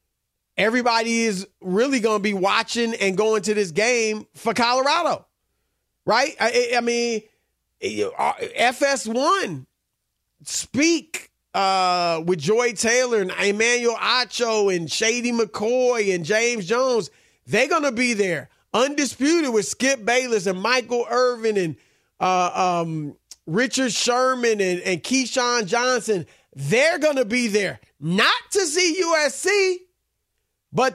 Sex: male